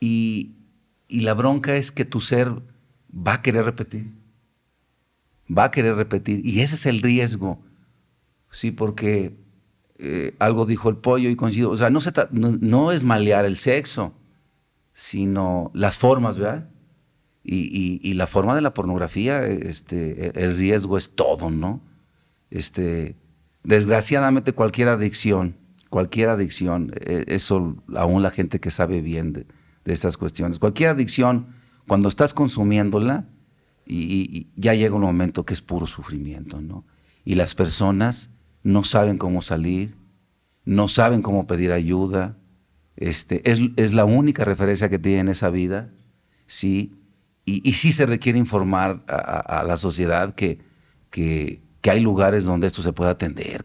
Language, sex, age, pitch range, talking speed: Spanish, male, 50-69, 90-115 Hz, 150 wpm